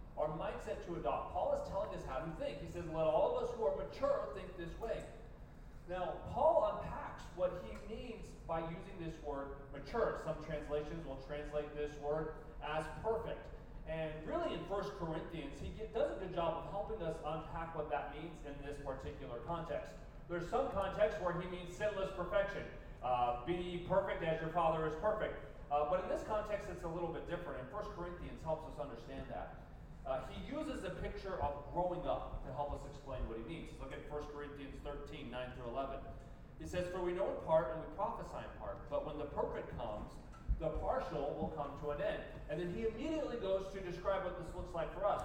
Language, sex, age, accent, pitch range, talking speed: English, male, 30-49, American, 145-190 Hz, 210 wpm